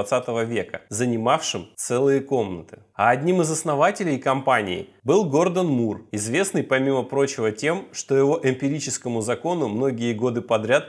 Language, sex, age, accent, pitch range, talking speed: Russian, male, 30-49, native, 110-145 Hz, 130 wpm